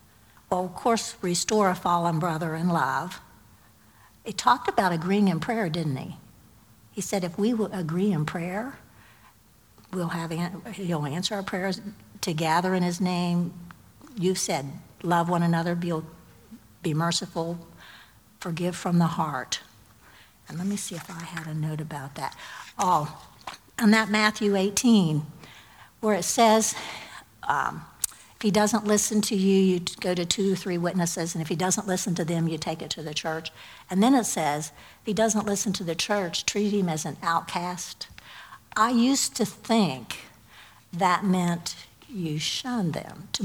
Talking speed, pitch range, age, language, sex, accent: 165 wpm, 165-205 Hz, 60-79, English, female, American